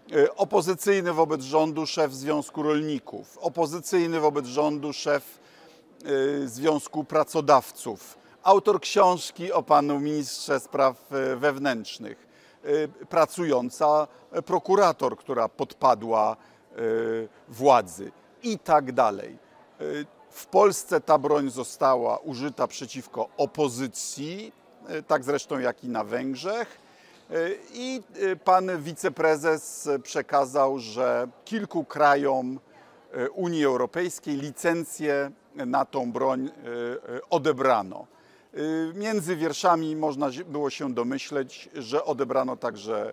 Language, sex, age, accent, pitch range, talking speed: Polish, male, 50-69, native, 135-170 Hz, 90 wpm